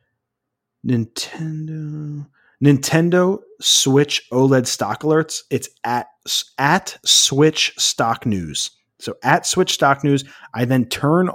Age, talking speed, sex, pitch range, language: 30-49, 105 wpm, male, 110-135 Hz, English